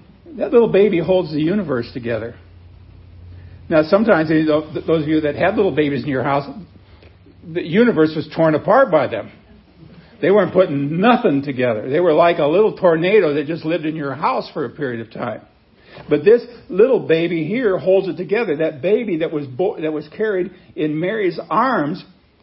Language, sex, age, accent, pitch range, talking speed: English, male, 60-79, American, 150-200 Hz, 175 wpm